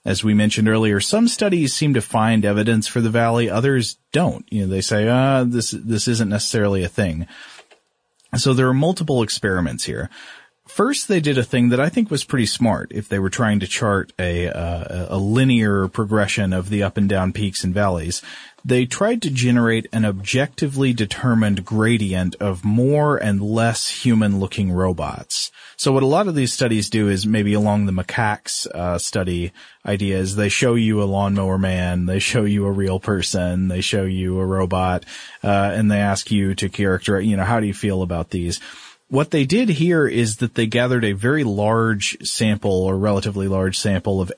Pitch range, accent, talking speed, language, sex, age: 95-115 Hz, American, 190 wpm, English, male, 30-49